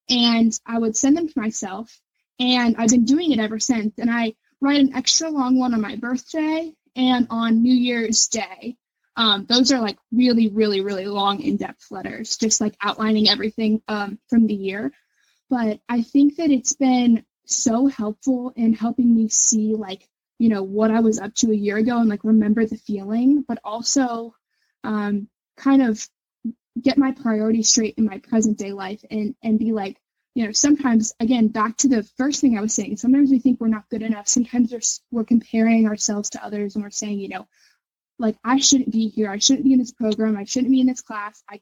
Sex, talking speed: female, 205 wpm